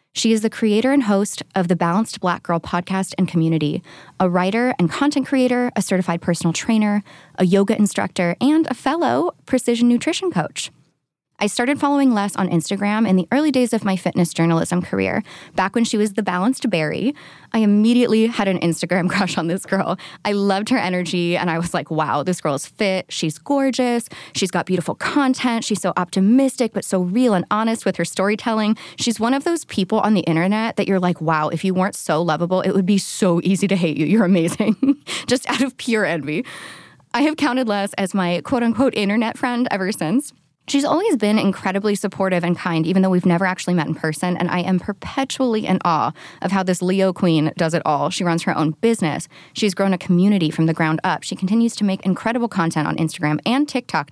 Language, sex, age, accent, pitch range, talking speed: English, female, 20-39, American, 175-235 Hz, 205 wpm